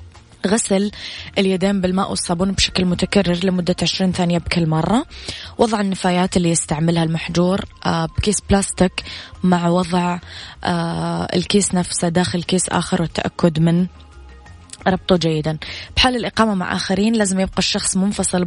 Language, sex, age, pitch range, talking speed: Arabic, female, 20-39, 165-195 Hz, 120 wpm